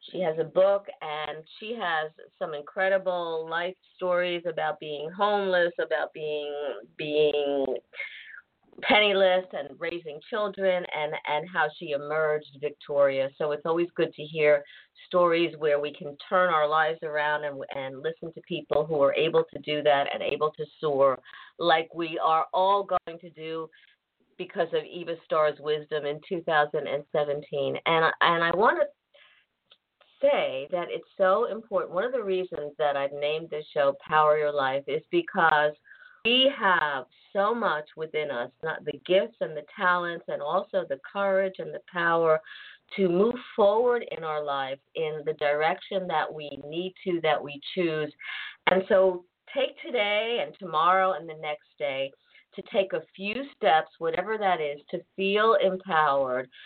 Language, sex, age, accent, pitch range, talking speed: English, female, 50-69, American, 150-195 Hz, 160 wpm